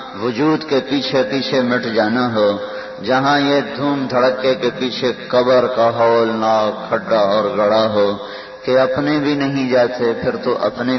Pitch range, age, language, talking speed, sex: 115-130 Hz, 50-69, Urdu, 160 wpm, male